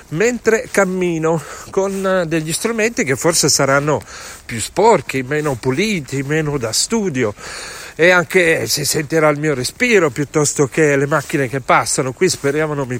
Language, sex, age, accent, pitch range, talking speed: Italian, male, 40-59, native, 140-180 Hz, 150 wpm